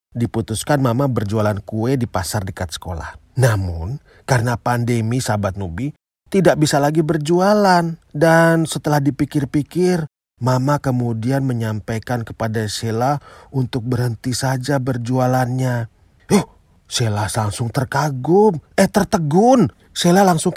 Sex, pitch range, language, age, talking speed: male, 120-175 Hz, Indonesian, 40-59, 105 wpm